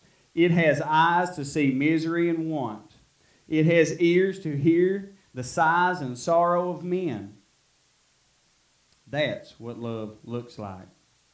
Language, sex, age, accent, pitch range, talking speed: English, male, 30-49, American, 125-165 Hz, 125 wpm